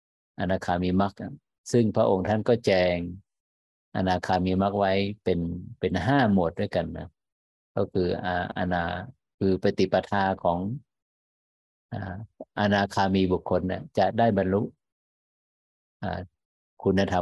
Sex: male